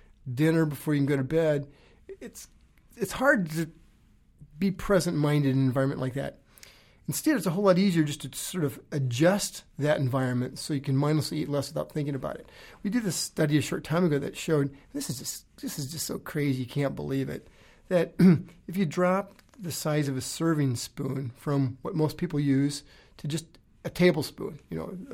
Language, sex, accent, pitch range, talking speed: English, male, American, 135-170 Hz, 200 wpm